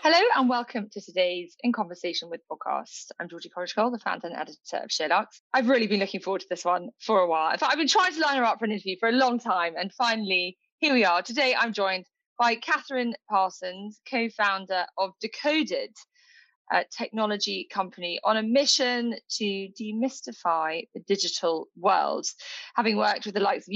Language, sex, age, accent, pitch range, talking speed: English, female, 20-39, British, 190-255 Hz, 190 wpm